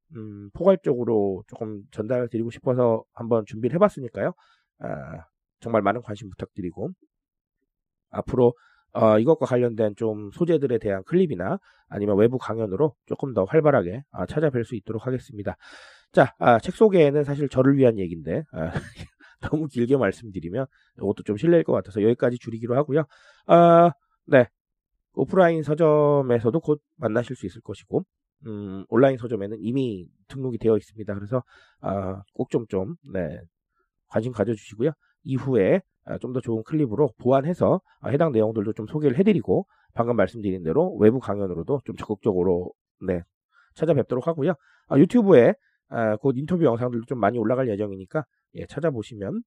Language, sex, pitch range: Korean, male, 105-145 Hz